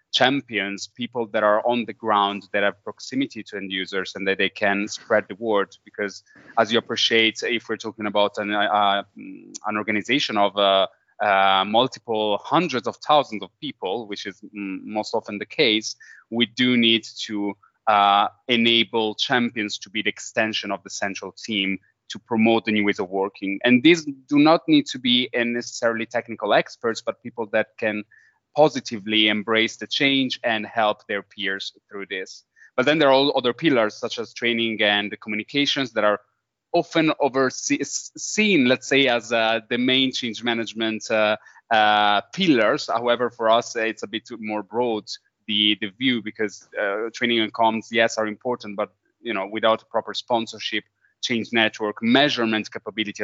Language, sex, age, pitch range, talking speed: Italian, male, 20-39, 105-120 Hz, 165 wpm